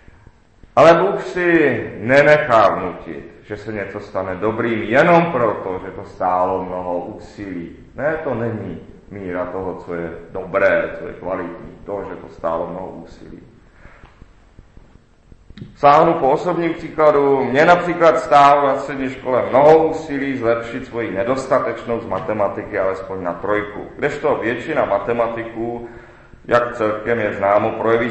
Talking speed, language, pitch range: 130 wpm, Czech, 100-125 Hz